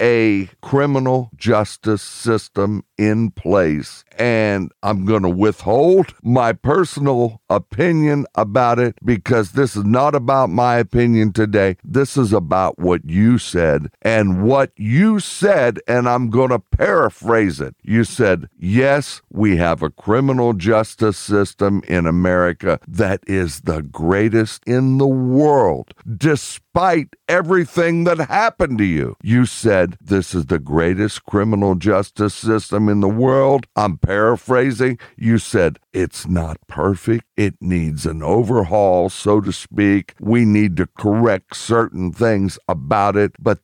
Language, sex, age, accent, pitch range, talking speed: English, male, 60-79, American, 95-120 Hz, 135 wpm